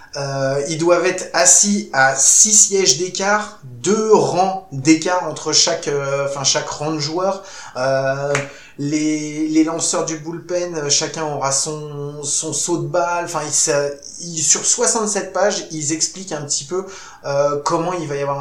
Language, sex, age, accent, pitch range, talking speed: French, male, 20-39, French, 140-175 Hz, 165 wpm